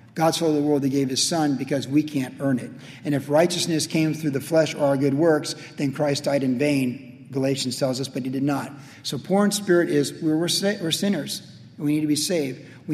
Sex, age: male, 50-69